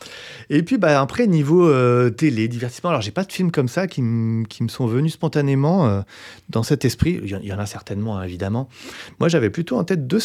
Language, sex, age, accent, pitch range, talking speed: French, male, 30-49, French, 110-160 Hz, 230 wpm